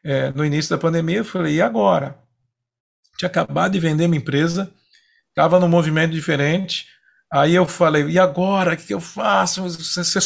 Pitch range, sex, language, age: 155-210 Hz, male, Portuguese, 40-59